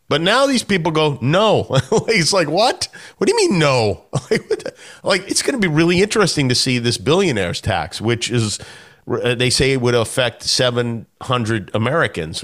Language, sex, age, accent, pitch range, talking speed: English, male, 40-59, American, 115-160 Hz, 175 wpm